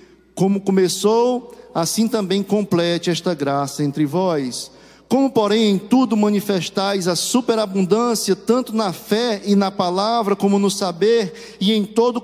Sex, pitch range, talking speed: male, 145-205 Hz, 135 wpm